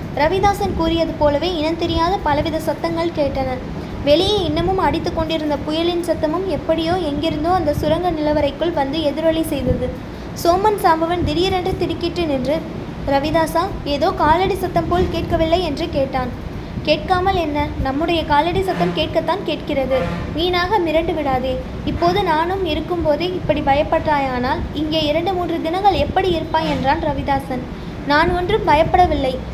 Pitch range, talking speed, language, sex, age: 300-350 Hz, 125 wpm, Tamil, female, 20-39